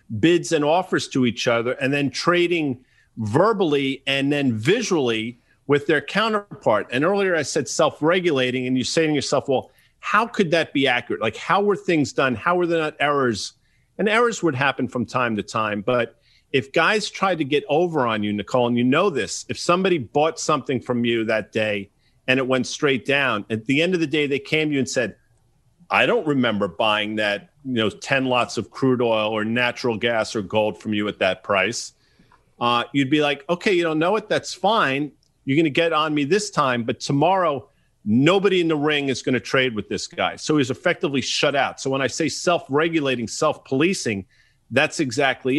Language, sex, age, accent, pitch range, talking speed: English, male, 40-59, American, 120-165 Hz, 205 wpm